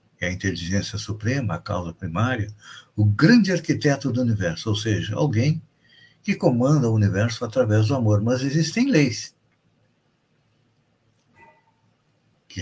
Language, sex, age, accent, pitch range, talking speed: Portuguese, male, 60-79, Brazilian, 105-140 Hz, 125 wpm